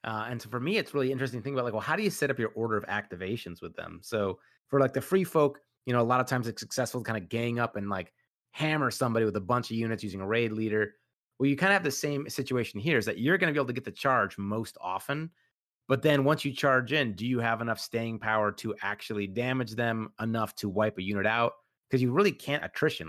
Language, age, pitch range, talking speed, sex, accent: English, 30-49, 110-140 Hz, 275 wpm, male, American